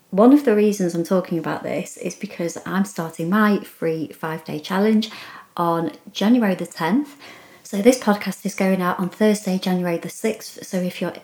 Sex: female